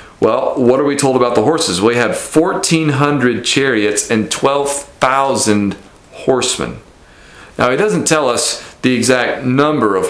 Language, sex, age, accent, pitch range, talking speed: English, male, 40-59, American, 115-155 Hz, 150 wpm